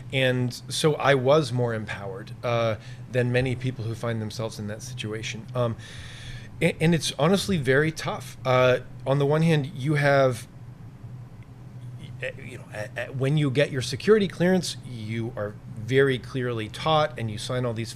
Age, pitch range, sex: 30-49, 120-140 Hz, male